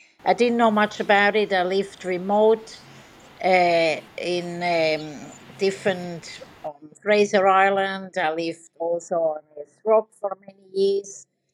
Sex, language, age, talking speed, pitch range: female, English, 60-79, 130 wpm, 165-200 Hz